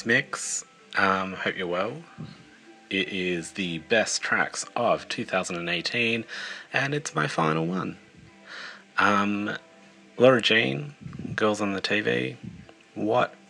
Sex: male